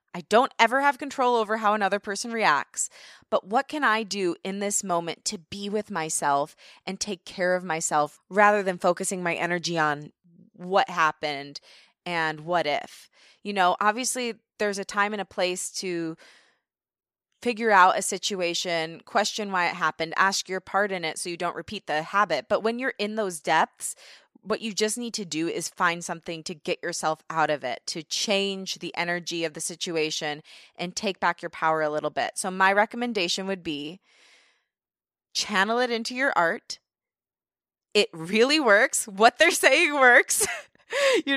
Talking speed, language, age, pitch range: 175 wpm, English, 20-39, 175-225 Hz